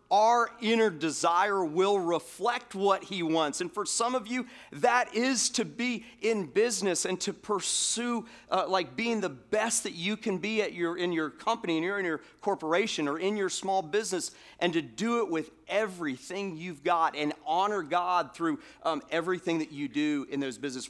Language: English